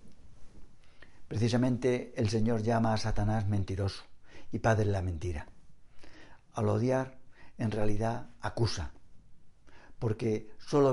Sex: male